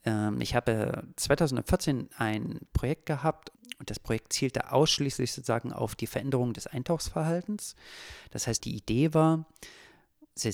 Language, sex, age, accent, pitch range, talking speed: German, male, 40-59, German, 115-155 Hz, 130 wpm